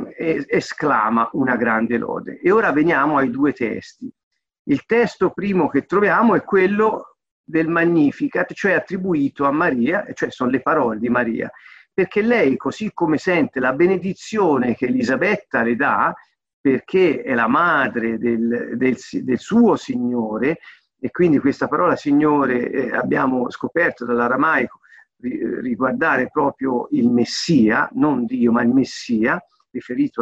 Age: 50-69